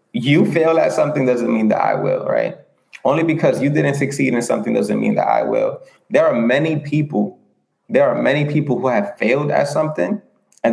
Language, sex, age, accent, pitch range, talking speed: English, male, 20-39, American, 115-150 Hz, 200 wpm